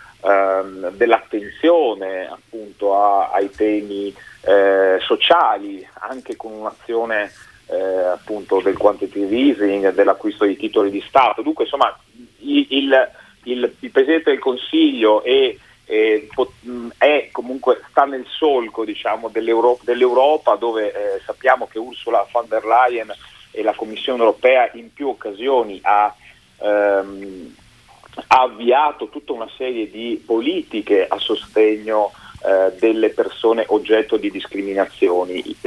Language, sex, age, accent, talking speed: Italian, male, 40-59, native, 110 wpm